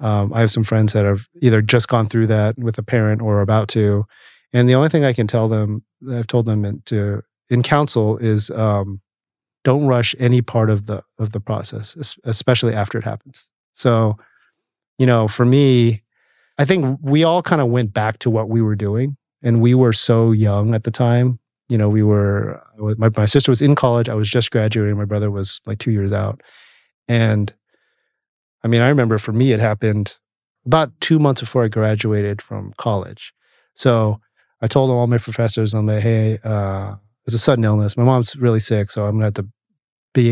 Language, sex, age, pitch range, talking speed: English, male, 30-49, 110-125 Hz, 210 wpm